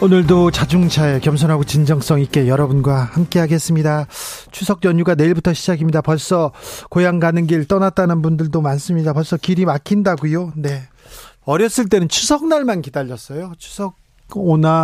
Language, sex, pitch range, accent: Korean, male, 140-190 Hz, native